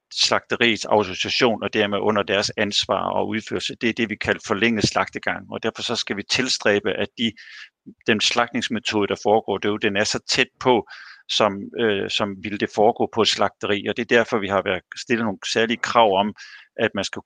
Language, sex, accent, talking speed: Danish, male, native, 200 wpm